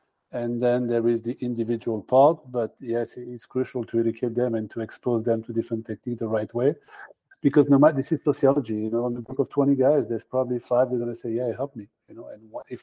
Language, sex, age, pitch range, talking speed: English, male, 50-69, 115-130 Hz, 250 wpm